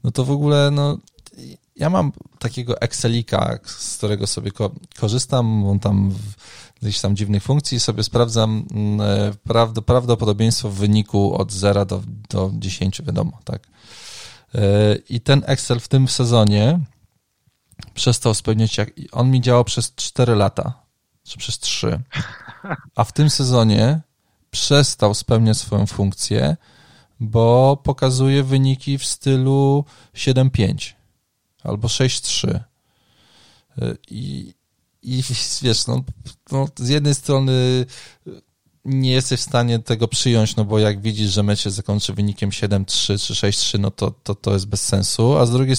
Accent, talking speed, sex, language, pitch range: native, 140 wpm, male, Polish, 105-130 Hz